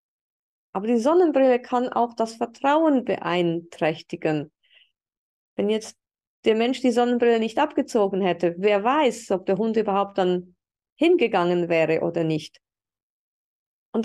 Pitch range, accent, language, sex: 195-270 Hz, German, German, female